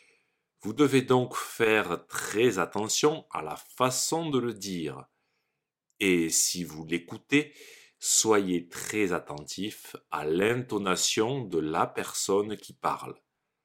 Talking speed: 115 wpm